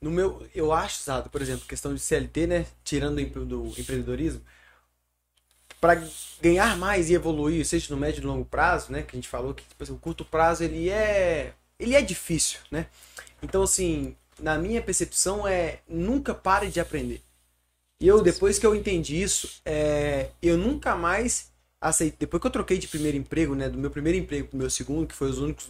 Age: 20-39